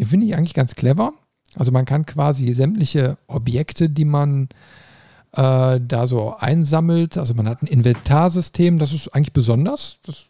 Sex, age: male, 50-69